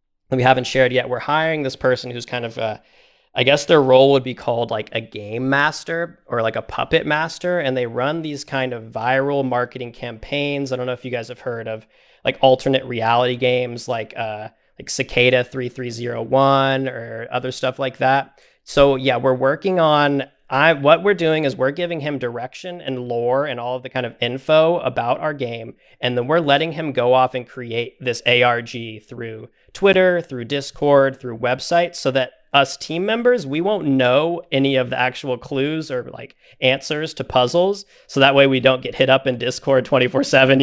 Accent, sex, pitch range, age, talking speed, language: American, male, 120-140 Hz, 20-39, 200 wpm, English